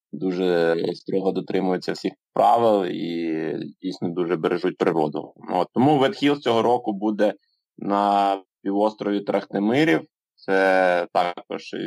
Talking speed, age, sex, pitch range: 105 wpm, 20-39, male, 95-105 Hz